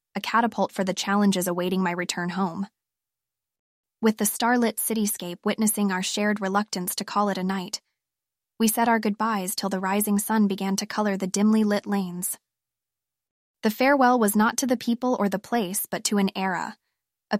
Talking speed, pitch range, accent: 180 wpm, 185-215 Hz, American